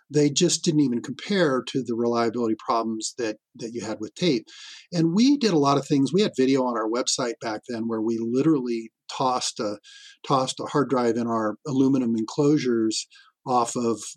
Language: English